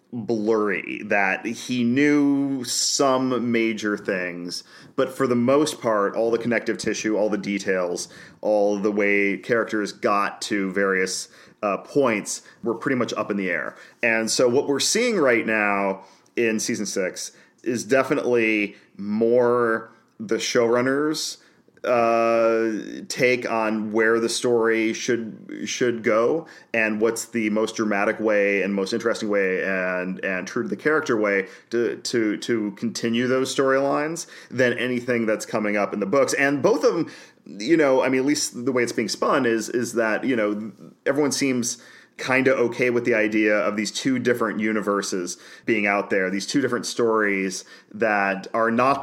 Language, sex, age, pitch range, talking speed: English, male, 40-59, 105-125 Hz, 160 wpm